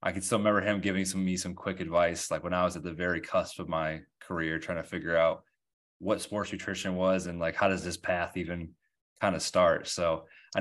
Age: 20-39